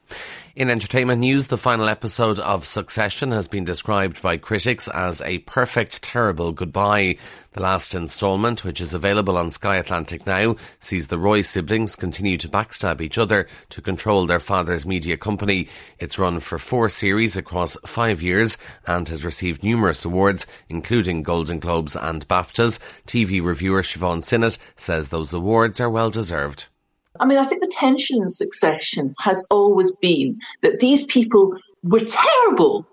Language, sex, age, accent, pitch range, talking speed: English, male, 30-49, Irish, 90-135 Hz, 155 wpm